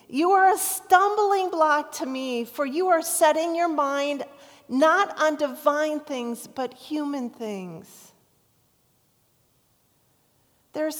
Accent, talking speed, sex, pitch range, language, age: American, 115 wpm, female, 205-285 Hz, English, 40-59